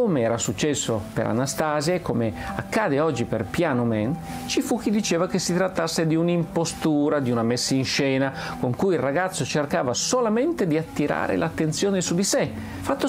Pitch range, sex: 125-195 Hz, male